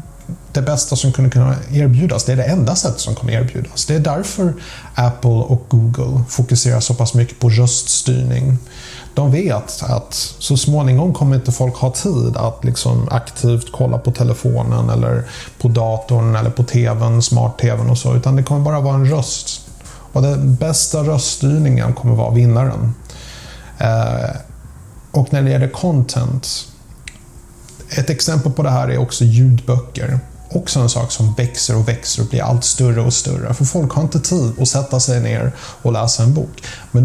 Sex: male